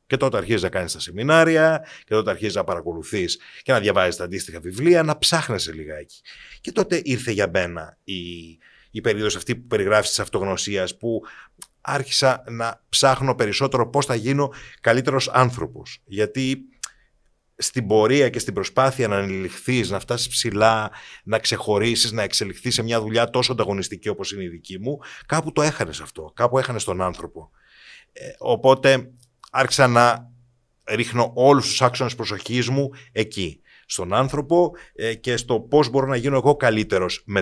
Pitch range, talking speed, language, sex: 105-135 Hz, 160 wpm, Greek, male